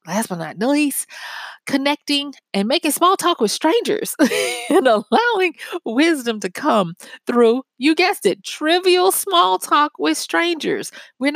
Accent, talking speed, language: American, 135 wpm, English